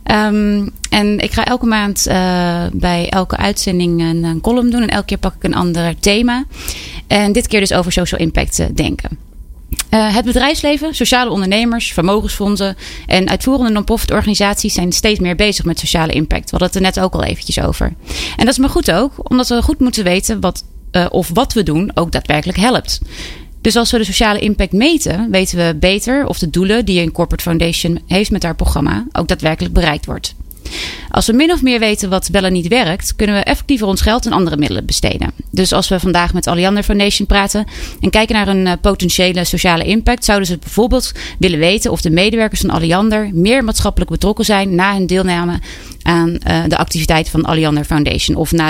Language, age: Dutch, 30-49